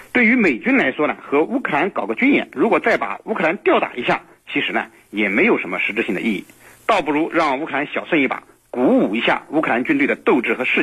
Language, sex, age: Chinese, male, 50-69